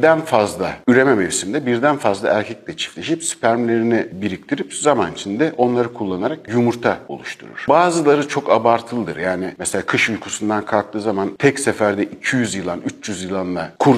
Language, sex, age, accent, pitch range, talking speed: Turkish, male, 60-79, native, 100-140 Hz, 135 wpm